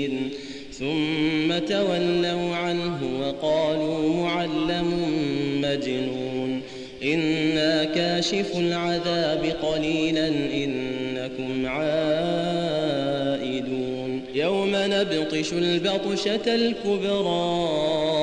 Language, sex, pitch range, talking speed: Arabic, male, 140-170 Hz, 55 wpm